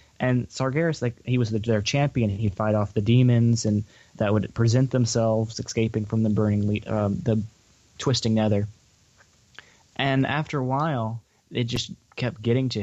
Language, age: English, 20-39